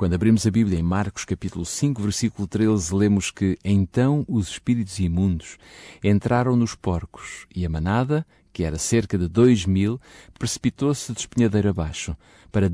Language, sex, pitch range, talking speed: Portuguese, male, 95-120 Hz, 155 wpm